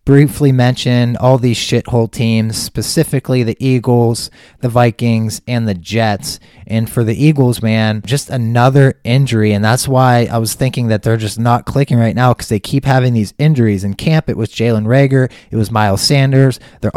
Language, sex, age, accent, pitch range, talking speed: English, male, 20-39, American, 110-130 Hz, 185 wpm